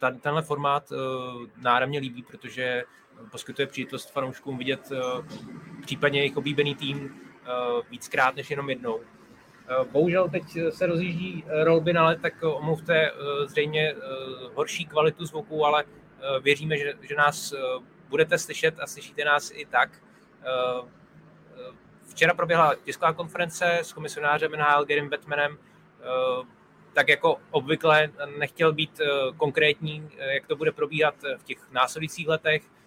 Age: 20-39